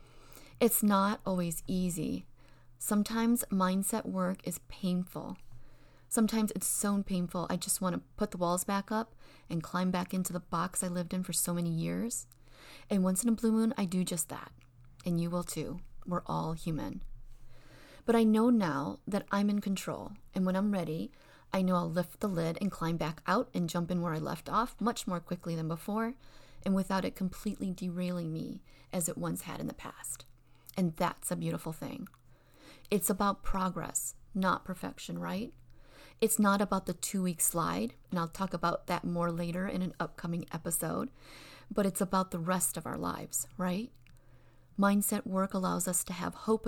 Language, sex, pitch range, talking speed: English, female, 165-200 Hz, 185 wpm